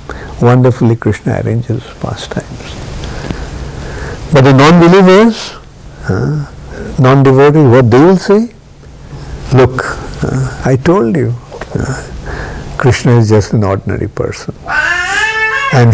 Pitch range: 115-155 Hz